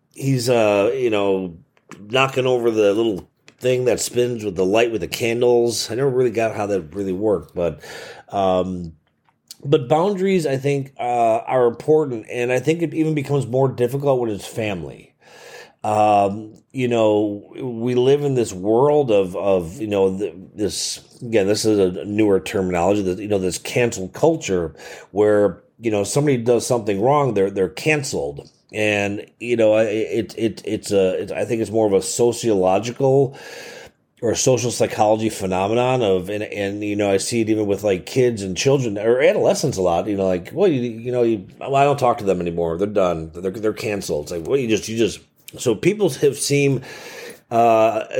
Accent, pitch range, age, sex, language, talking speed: American, 100-130 Hz, 30-49, male, English, 190 wpm